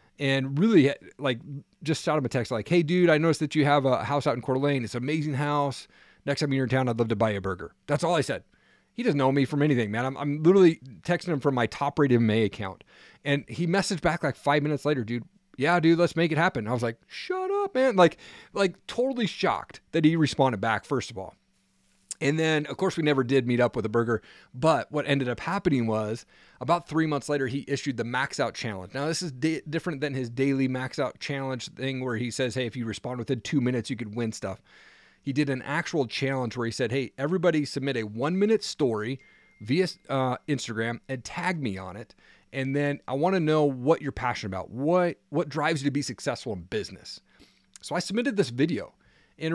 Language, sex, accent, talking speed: English, male, American, 230 wpm